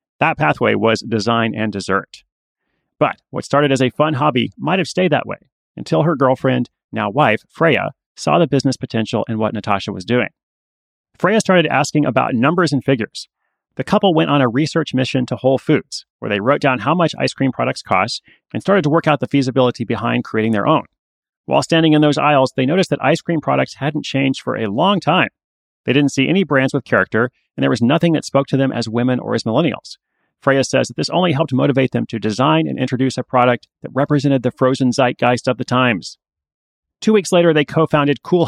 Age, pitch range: 30-49, 120-150 Hz